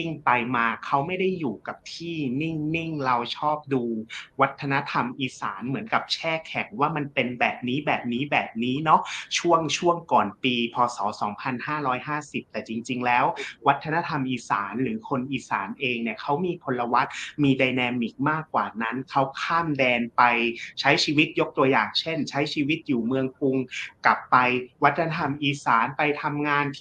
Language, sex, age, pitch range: Thai, male, 30-49, 125-155 Hz